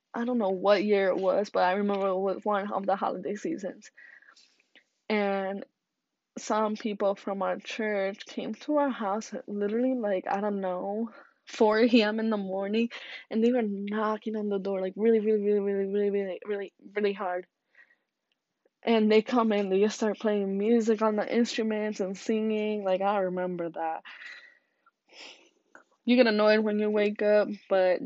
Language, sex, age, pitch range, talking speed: English, female, 10-29, 190-225 Hz, 170 wpm